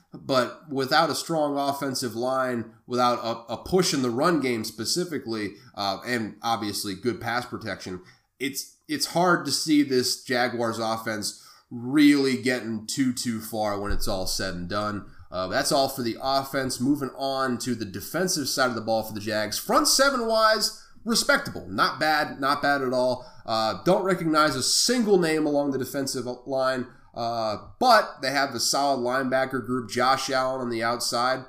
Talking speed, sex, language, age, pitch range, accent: 170 wpm, male, English, 30-49, 115-145 Hz, American